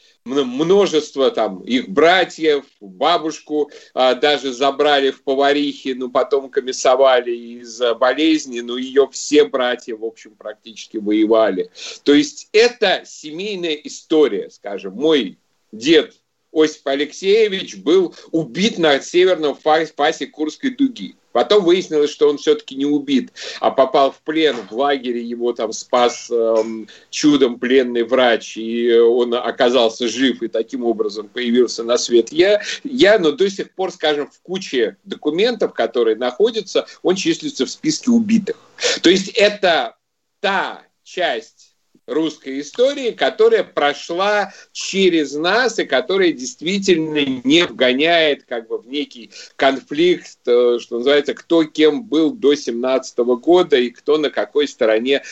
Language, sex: Russian, male